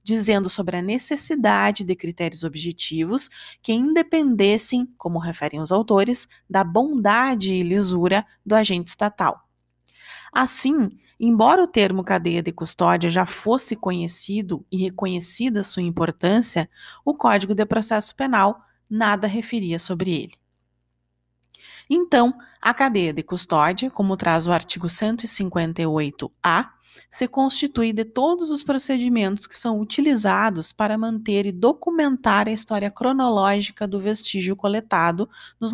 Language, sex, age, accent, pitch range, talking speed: Portuguese, female, 20-39, Brazilian, 180-235 Hz, 125 wpm